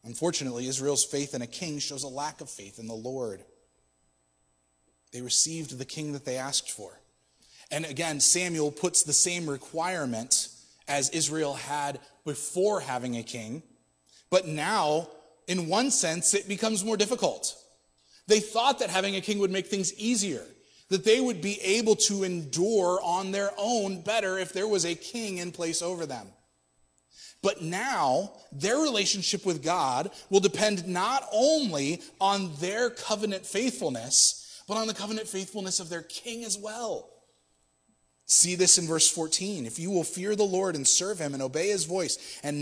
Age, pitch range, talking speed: 30-49, 135-200 Hz, 165 wpm